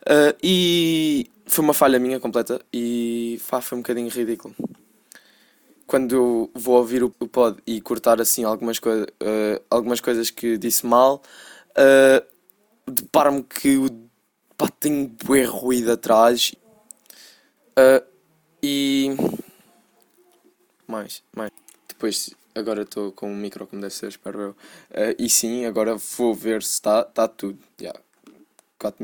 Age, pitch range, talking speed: 10-29, 110-140 Hz, 140 wpm